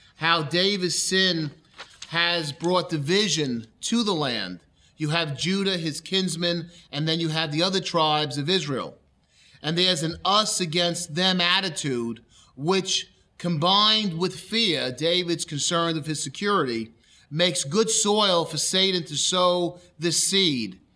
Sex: male